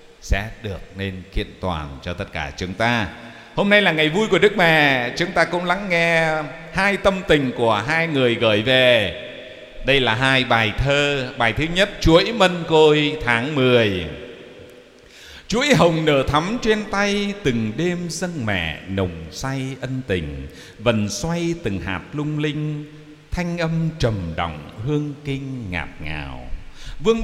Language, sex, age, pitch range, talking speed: Vietnamese, male, 60-79, 110-170 Hz, 160 wpm